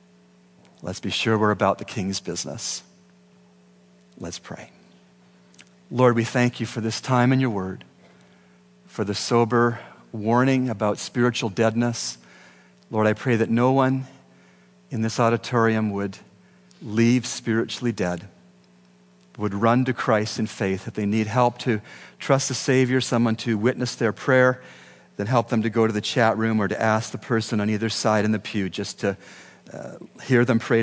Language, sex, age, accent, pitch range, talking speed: English, male, 40-59, American, 85-120 Hz, 165 wpm